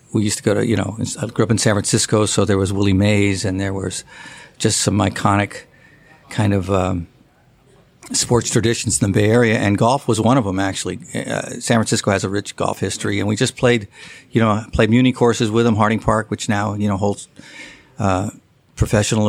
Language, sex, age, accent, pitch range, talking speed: English, male, 50-69, American, 105-120 Hz, 210 wpm